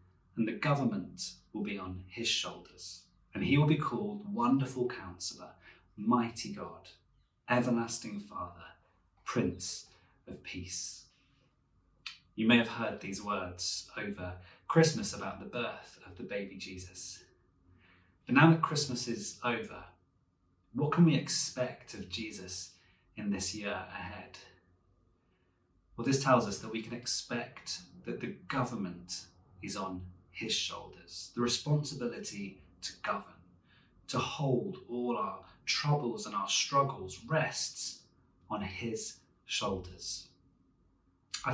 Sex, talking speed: male, 125 wpm